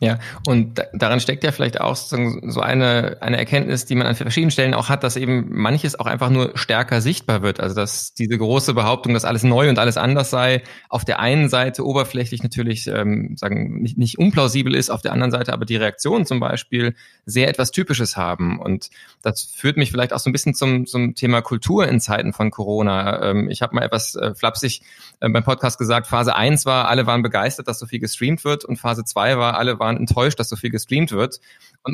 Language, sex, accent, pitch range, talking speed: German, male, German, 110-130 Hz, 220 wpm